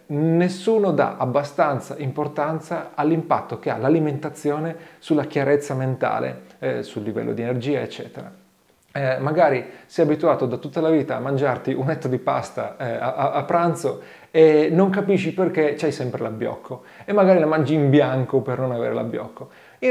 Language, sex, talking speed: Italian, male, 160 wpm